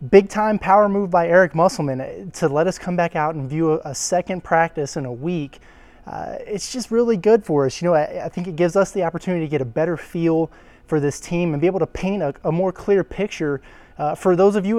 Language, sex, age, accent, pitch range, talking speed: English, male, 20-39, American, 145-175 Hz, 250 wpm